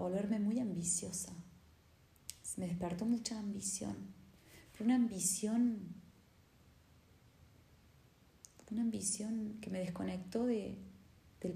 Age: 20-39